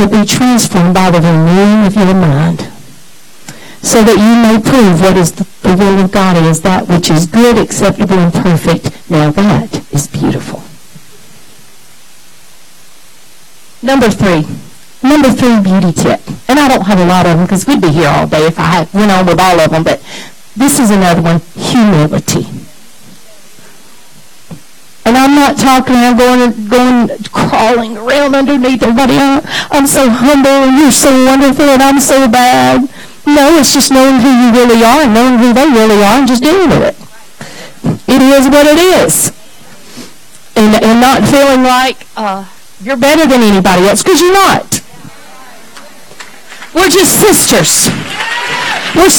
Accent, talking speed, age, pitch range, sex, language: American, 155 wpm, 50-69, 190-275 Hz, female, English